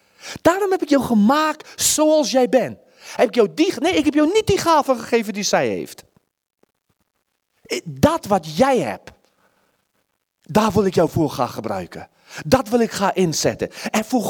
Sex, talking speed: male, 170 wpm